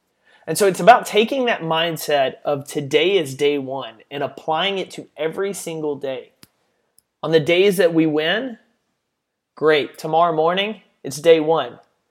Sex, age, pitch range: male, 30-49, 150-190 Hz